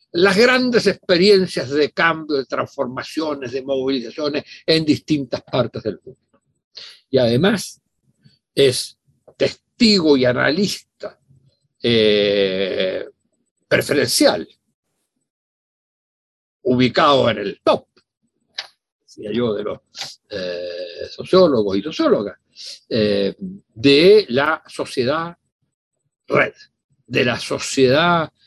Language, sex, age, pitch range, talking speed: Spanish, male, 60-79, 115-190 Hz, 90 wpm